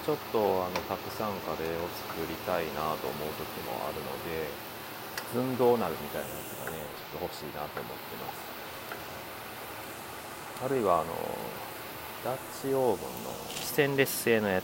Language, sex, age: Japanese, male, 40-59